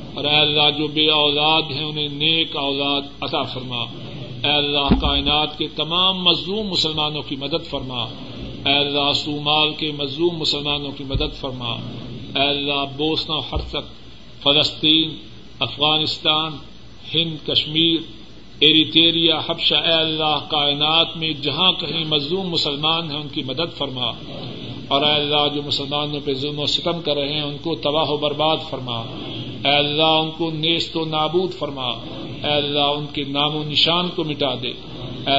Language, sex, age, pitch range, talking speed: Urdu, male, 50-69, 140-155 Hz, 155 wpm